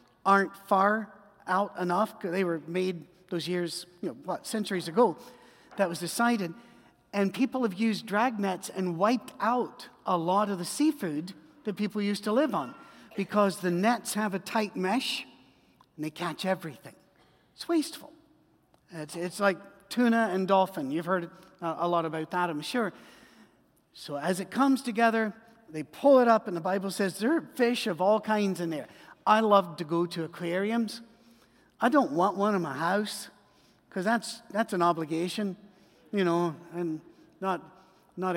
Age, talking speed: 50-69, 170 wpm